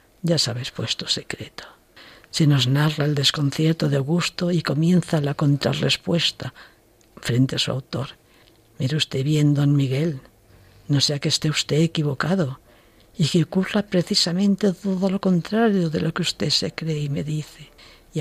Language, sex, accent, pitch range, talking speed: Spanish, female, Spanish, 140-175 Hz, 155 wpm